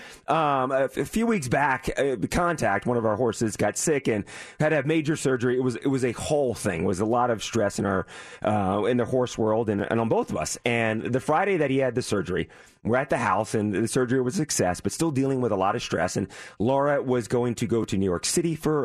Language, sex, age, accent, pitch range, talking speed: English, male, 30-49, American, 115-160 Hz, 265 wpm